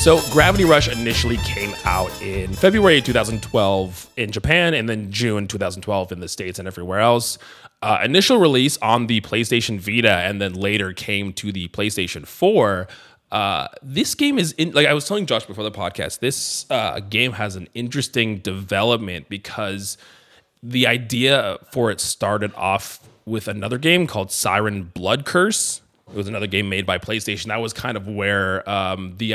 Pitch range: 95-120 Hz